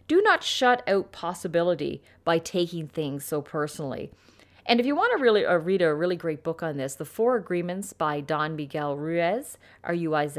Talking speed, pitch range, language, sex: 185 wpm, 165-225 Hz, English, female